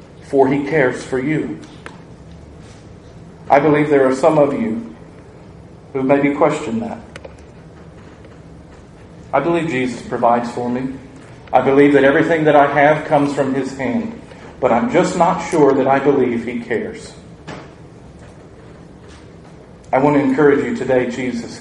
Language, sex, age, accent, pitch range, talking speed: English, male, 40-59, American, 130-150 Hz, 140 wpm